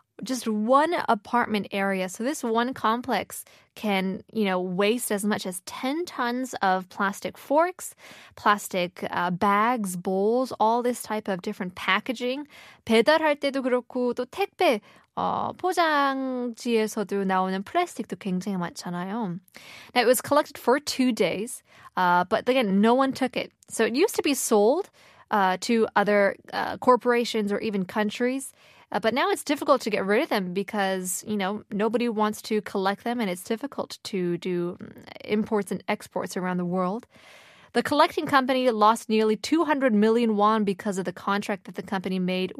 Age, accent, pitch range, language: 20-39, American, 195-250 Hz, Korean